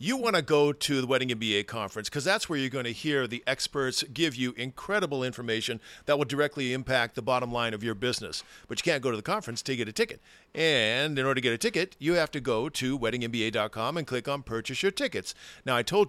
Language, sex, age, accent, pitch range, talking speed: English, male, 50-69, American, 120-155 Hz, 245 wpm